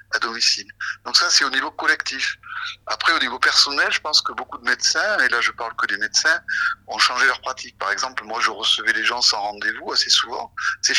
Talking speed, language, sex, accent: 225 wpm, French, male, French